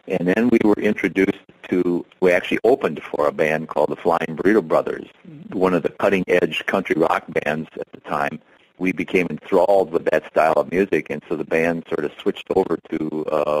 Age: 50-69